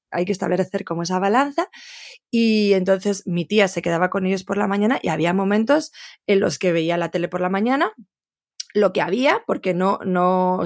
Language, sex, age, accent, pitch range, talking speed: Spanish, female, 20-39, Spanish, 185-230 Hz, 205 wpm